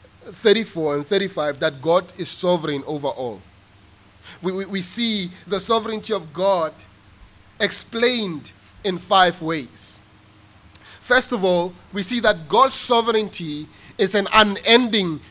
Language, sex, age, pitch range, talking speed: English, male, 30-49, 155-220 Hz, 125 wpm